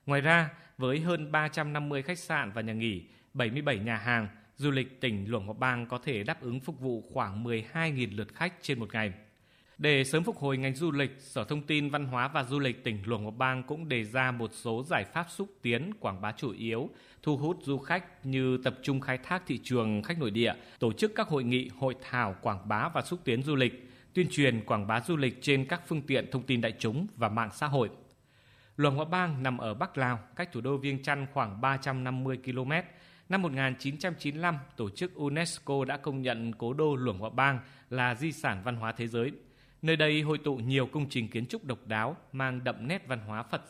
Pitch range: 115-150 Hz